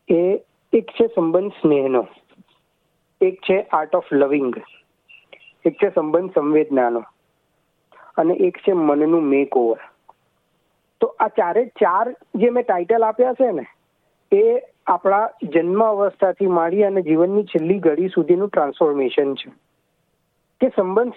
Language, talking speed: Gujarati, 45 wpm